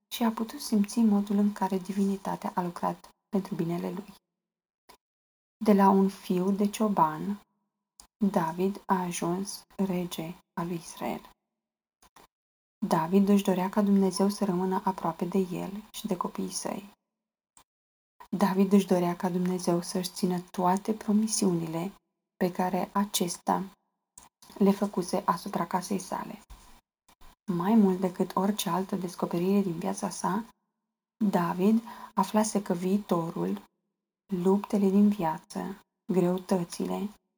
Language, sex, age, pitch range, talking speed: Romanian, female, 20-39, 185-205 Hz, 120 wpm